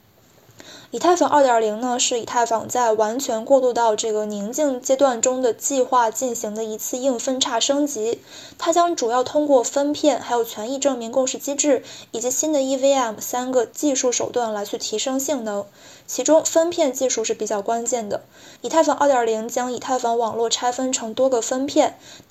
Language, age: Chinese, 20-39